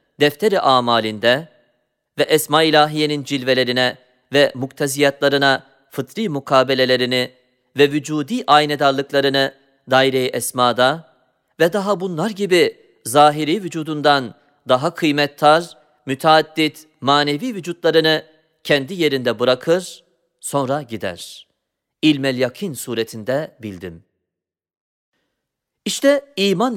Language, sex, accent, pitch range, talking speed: Turkish, male, native, 125-160 Hz, 80 wpm